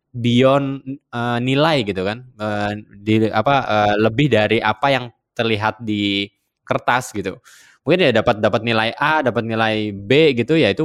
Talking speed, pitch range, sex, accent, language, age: 160 wpm, 105-145 Hz, male, native, Indonesian, 20-39